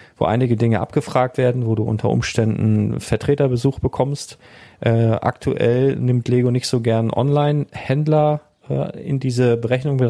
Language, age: German, 40-59